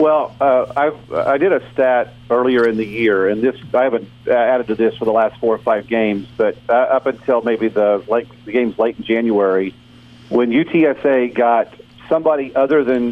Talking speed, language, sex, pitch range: 195 wpm, English, male, 115-130 Hz